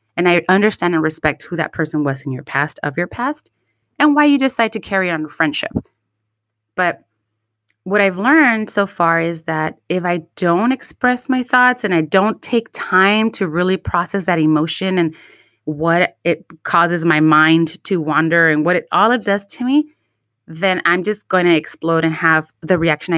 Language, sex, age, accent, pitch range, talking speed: English, female, 30-49, American, 160-215 Hz, 190 wpm